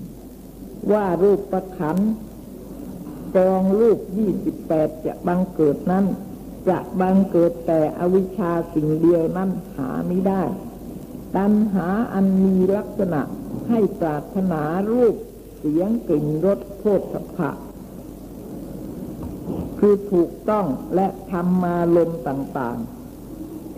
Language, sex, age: Thai, female, 60-79